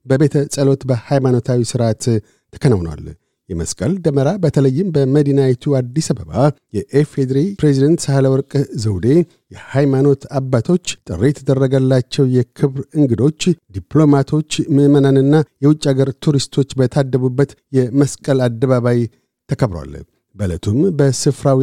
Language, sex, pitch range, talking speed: Amharic, male, 125-145 Hz, 90 wpm